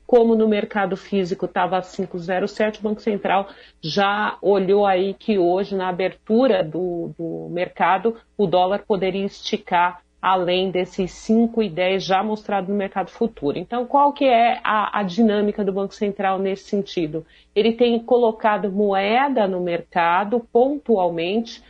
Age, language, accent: 50-69, Portuguese, Brazilian